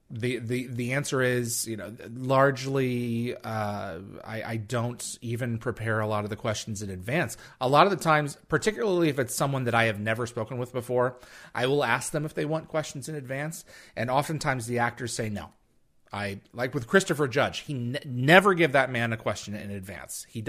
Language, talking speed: English, 200 wpm